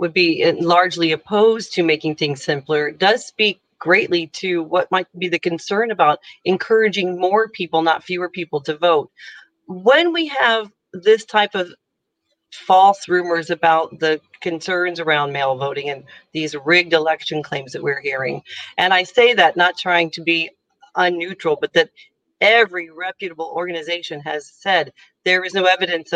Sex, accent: female, American